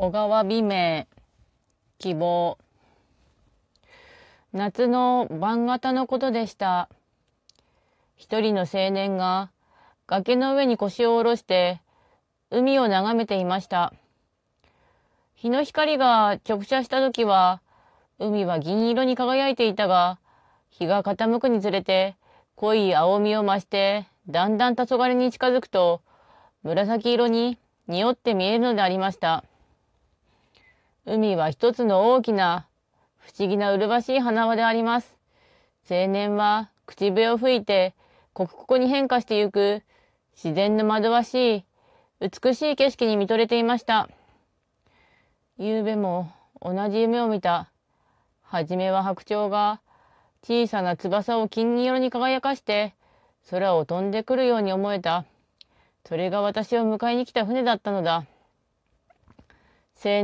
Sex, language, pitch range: female, Japanese, 190-240 Hz